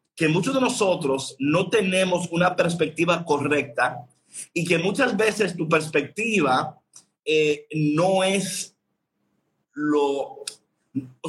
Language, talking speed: Spanish, 105 wpm